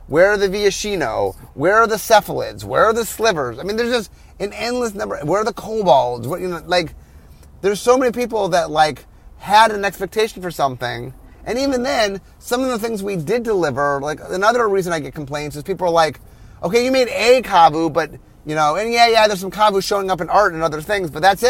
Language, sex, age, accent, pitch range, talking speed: English, male, 30-49, American, 150-230 Hz, 225 wpm